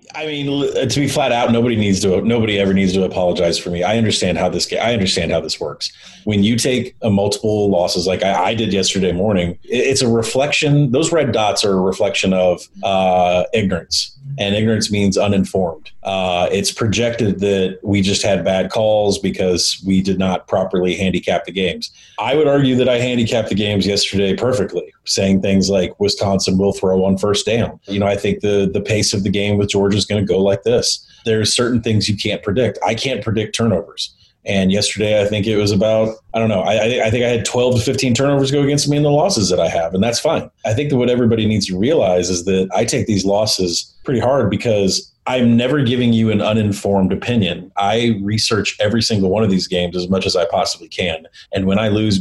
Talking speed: 215 wpm